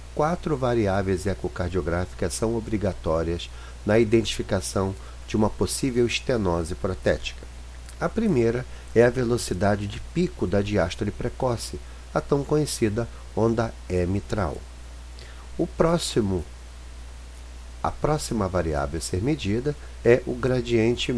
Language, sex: Portuguese, male